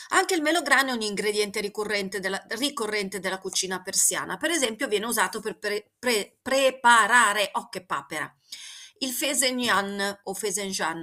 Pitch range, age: 185-240 Hz, 40-59